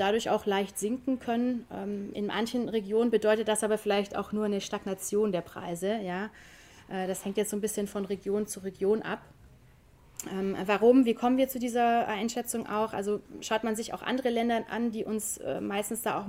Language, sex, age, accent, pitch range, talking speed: German, female, 30-49, German, 200-225 Hz, 185 wpm